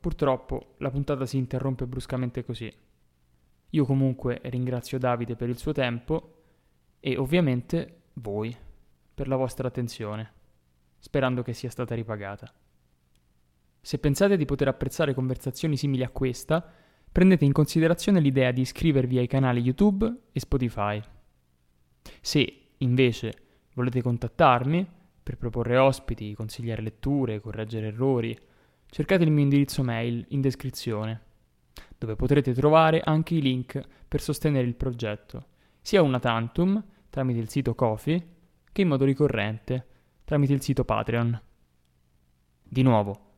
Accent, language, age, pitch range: native, Italian, 20-39, 110-140 Hz